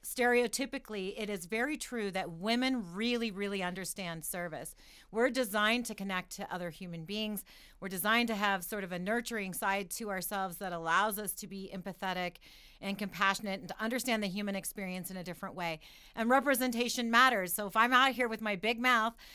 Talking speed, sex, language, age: 185 wpm, female, English, 40-59